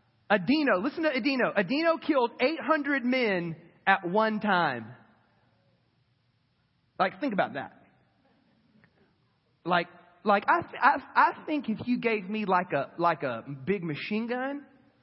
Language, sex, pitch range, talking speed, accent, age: English, male, 155-260 Hz, 130 wpm, American, 30-49